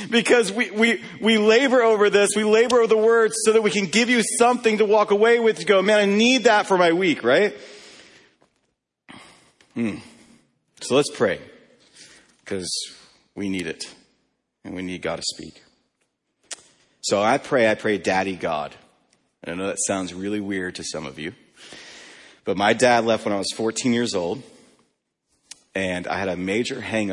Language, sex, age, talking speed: English, male, 40-59, 180 wpm